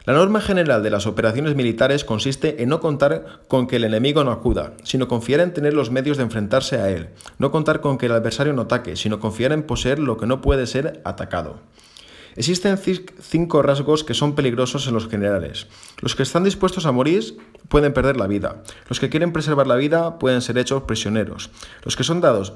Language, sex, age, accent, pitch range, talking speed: Spanish, male, 20-39, Spanish, 115-145 Hz, 210 wpm